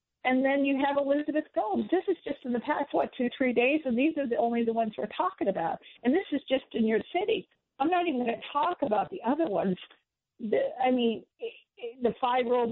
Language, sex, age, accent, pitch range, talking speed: English, female, 50-69, American, 225-290 Hz, 225 wpm